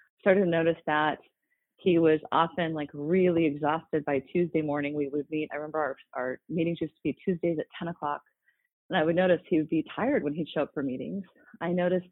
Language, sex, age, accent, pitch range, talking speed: English, female, 30-49, American, 165-215 Hz, 220 wpm